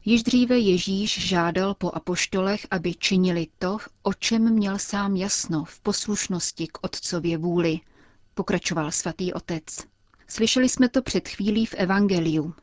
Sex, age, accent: female, 30-49, native